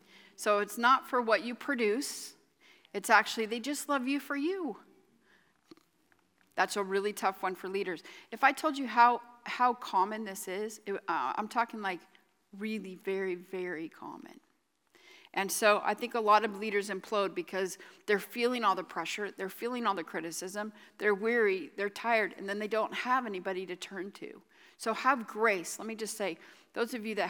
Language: English